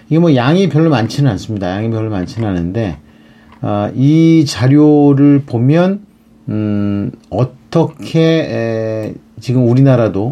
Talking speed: 100 wpm